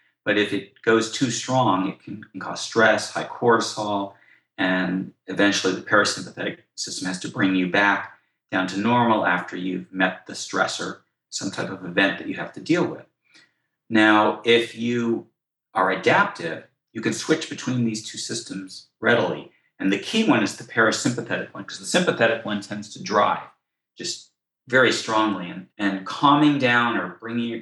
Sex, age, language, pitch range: male, 40-59, English, 100-115 Hz